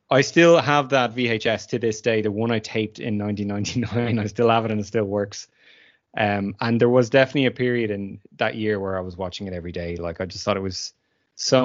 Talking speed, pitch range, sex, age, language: 235 wpm, 105-125 Hz, male, 20-39, English